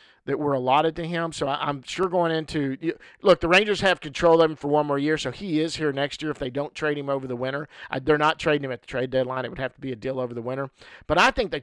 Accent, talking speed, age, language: American, 310 wpm, 50-69, English